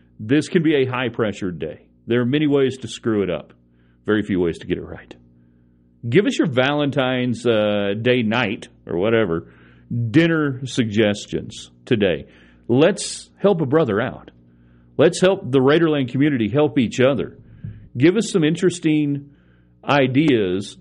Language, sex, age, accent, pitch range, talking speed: English, male, 40-59, American, 95-150 Hz, 145 wpm